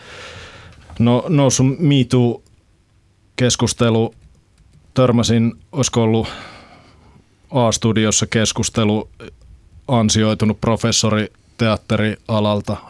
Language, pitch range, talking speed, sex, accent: Finnish, 95-115 Hz, 50 wpm, male, native